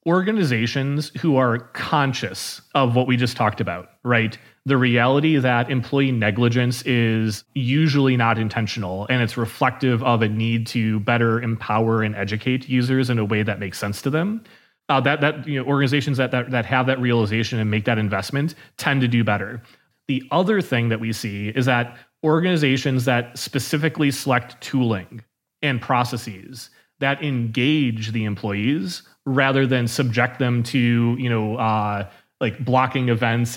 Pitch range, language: 115-135 Hz, English